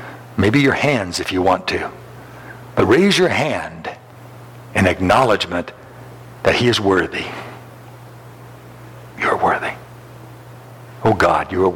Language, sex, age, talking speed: English, male, 60-79, 115 wpm